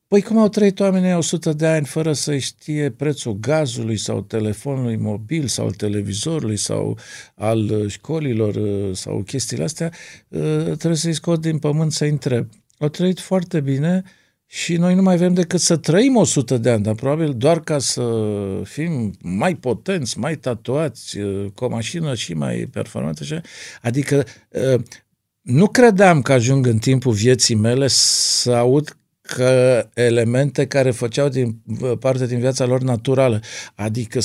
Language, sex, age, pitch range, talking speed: Romanian, male, 50-69, 115-165 Hz, 150 wpm